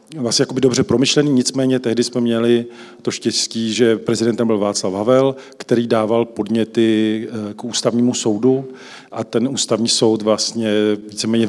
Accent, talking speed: native, 130 wpm